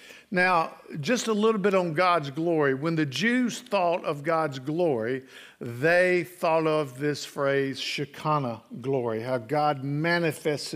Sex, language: male, English